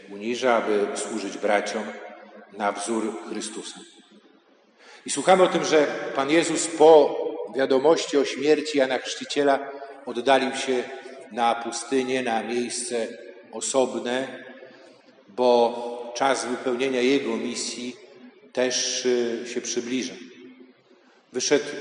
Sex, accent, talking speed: male, native, 100 wpm